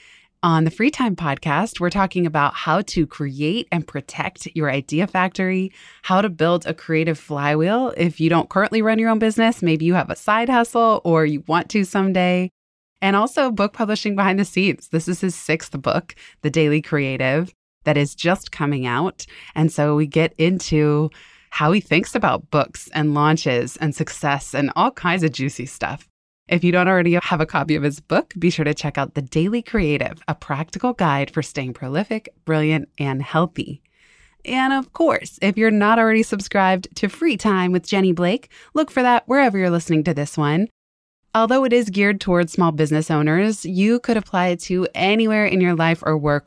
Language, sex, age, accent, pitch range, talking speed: English, female, 20-39, American, 155-200 Hz, 195 wpm